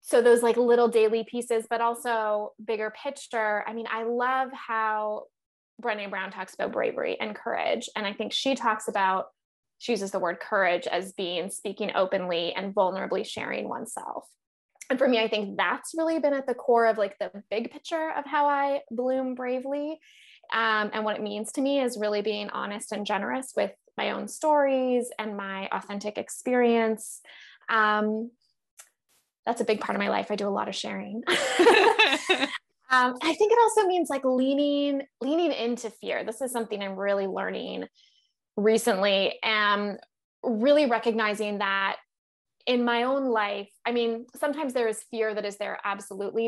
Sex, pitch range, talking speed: female, 210-260 Hz, 170 wpm